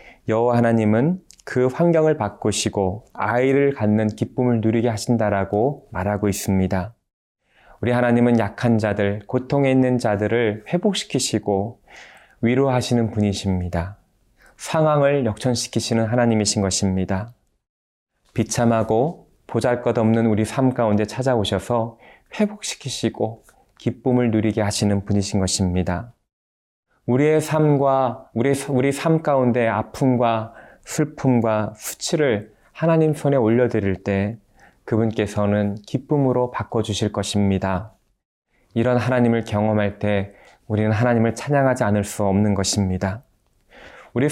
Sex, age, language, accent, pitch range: male, 20-39, Korean, native, 105-125 Hz